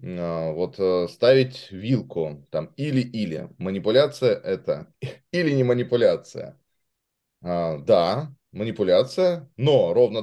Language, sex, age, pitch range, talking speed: Russian, male, 20-39, 85-130 Hz, 80 wpm